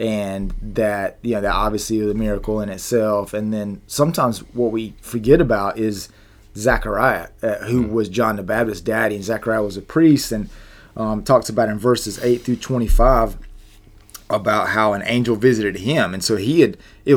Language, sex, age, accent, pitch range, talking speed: English, male, 30-49, American, 105-120 Hz, 180 wpm